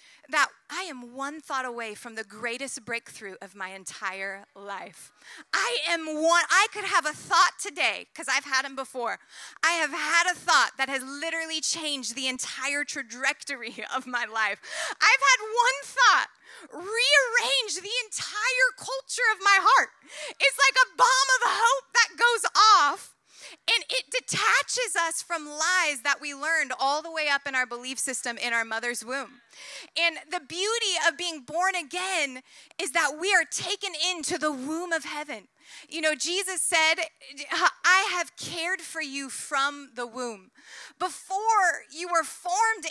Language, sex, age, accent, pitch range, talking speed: English, female, 30-49, American, 270-360 Hz, 165 wpm